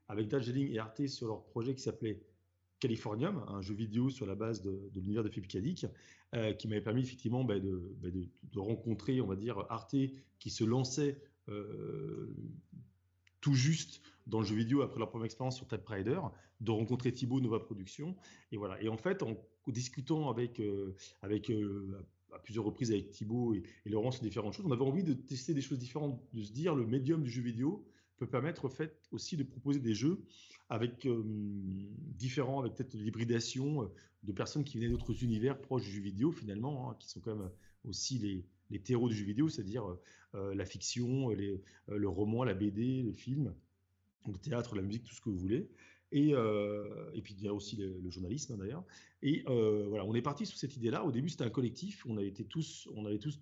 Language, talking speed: French, 205 wpm